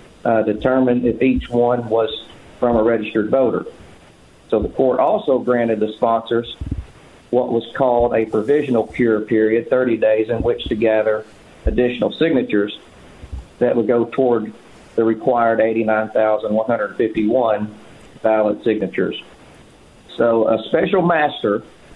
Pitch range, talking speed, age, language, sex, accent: 110-130 Hz, 125 wpm, 50-69, English, male, American